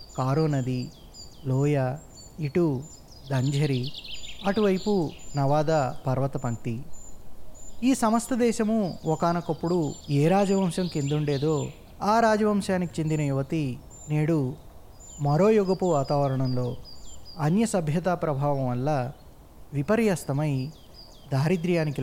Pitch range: 130-180 Hz